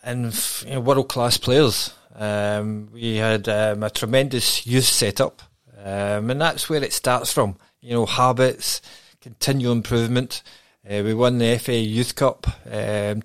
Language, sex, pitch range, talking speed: English, male, 115-135 Hz, 150 wpm